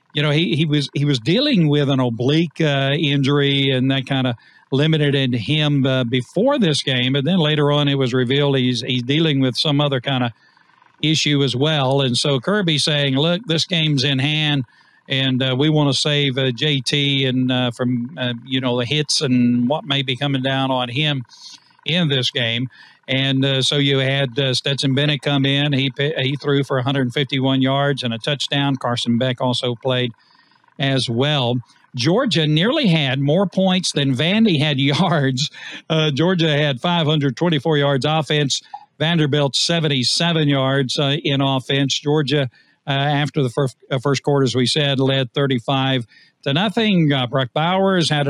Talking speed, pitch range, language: 175 wpm, 130-150 Hz, English